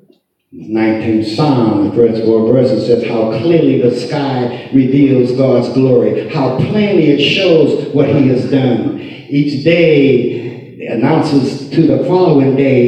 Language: English